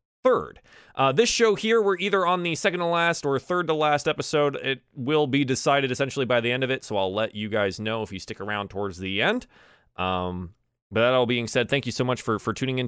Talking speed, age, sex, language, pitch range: 250 wpm, 30-49, male, English, 105-155 Hz